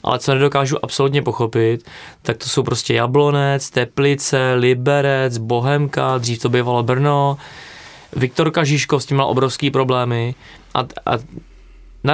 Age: 20-39